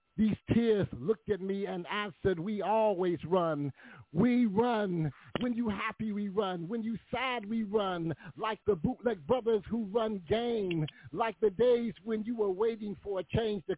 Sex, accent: male, American